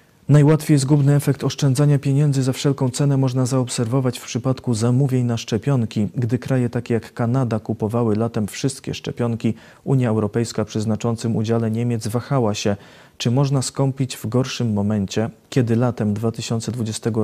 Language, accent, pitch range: Polish, native, 110-130 Hz